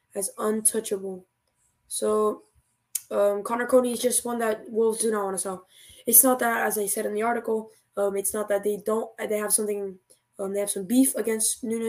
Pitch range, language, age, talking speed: 200-235 Hz, English, 10-29, 205 wpm